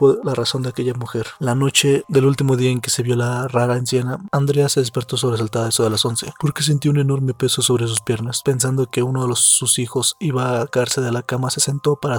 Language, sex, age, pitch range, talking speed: Spanish, male, 20-39, 120-135 Hz, 250 wpm